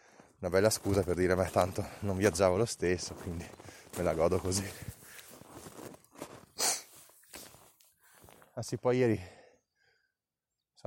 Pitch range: 90-110 Hz